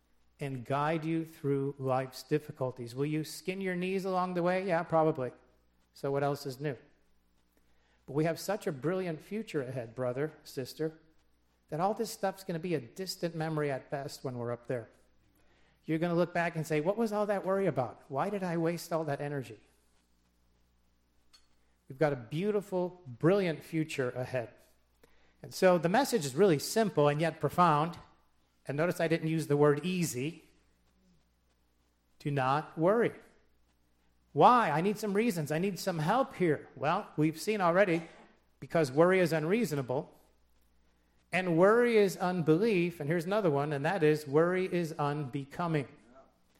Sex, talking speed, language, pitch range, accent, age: male, 160 wpm, English, 125-180 Hz, American, 50-69